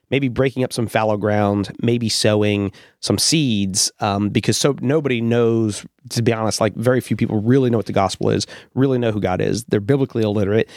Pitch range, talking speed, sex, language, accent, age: 105-125 Hz, 200 wpm, male, English, American, 30-49